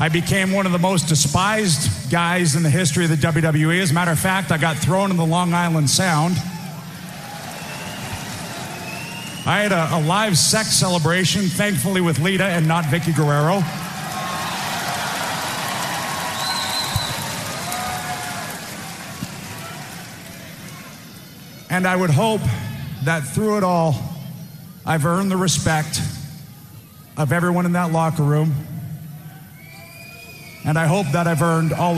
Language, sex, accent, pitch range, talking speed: English, male, American, 150-180 Hz, 125 wpm